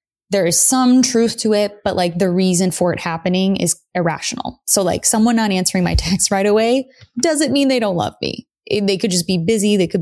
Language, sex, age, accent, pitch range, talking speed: English, female, 20-39, American, 170-195 Hz, 220 wpm